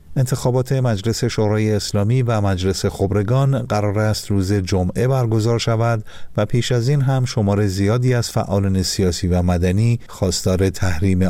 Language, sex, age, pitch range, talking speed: Persian, male, 50-69, 95-120 Hz, 145 wpm